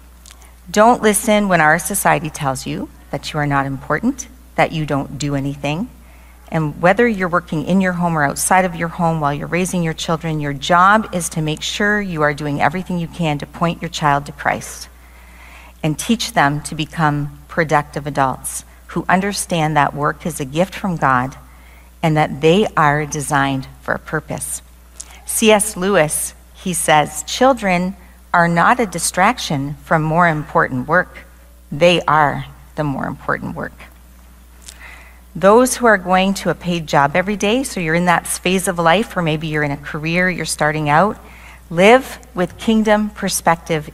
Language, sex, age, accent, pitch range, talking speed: English, female, 40-59, American, 140-180 Hz, 170 wpm